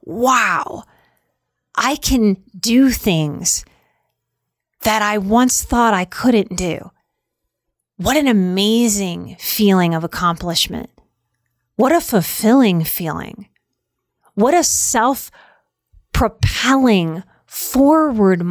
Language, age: English, 30-49